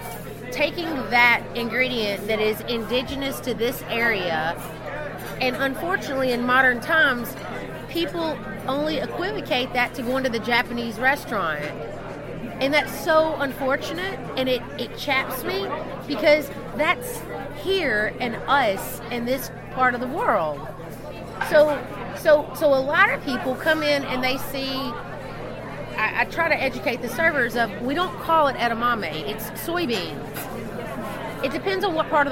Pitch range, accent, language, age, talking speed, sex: 230-290 Hz, American, English, 30-49, 140 wpm, female